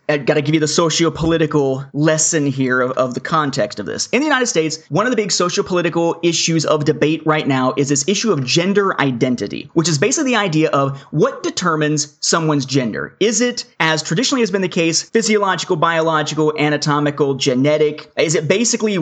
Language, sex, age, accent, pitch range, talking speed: English, male, 30-49, American, 145-195 Hz, 190 wpm